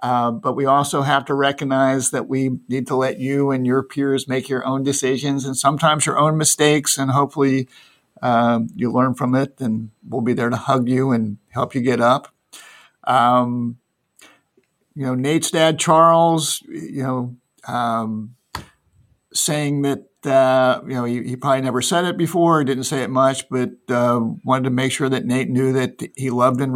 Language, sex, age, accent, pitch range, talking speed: English, male, 50-69, American, 125-145 Hz, 185 wpm